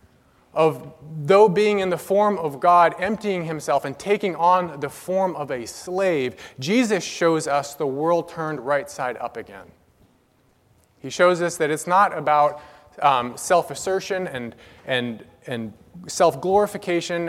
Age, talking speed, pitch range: 30-49, 140 wpm, 130-175 Hz